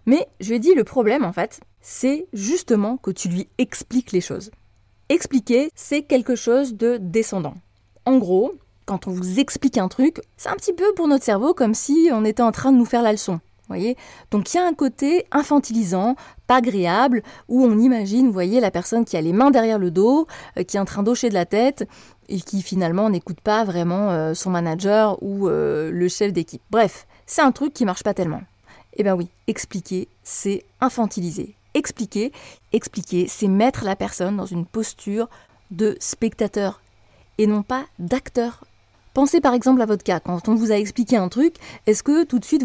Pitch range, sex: 190-245 Hz, female